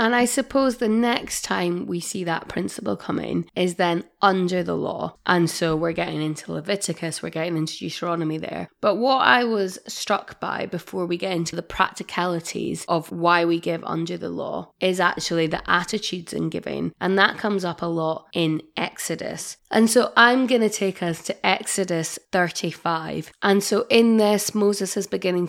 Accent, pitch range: British, 165-200 Hz